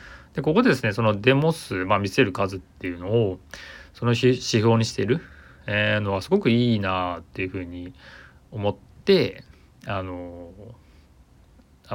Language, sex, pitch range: Japanese, male, 90-120 Hz